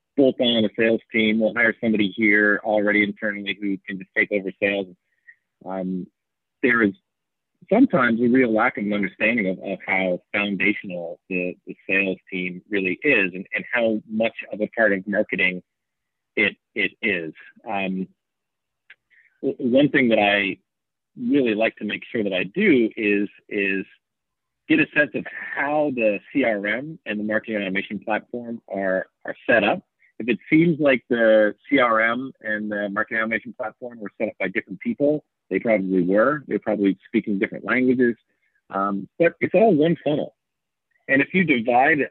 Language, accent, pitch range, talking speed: English, American, 100-125 Hz, 160 wpm